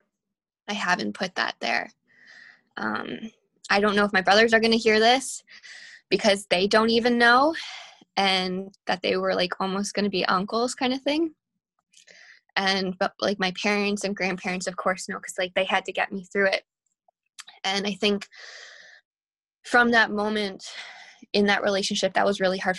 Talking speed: 175 wpm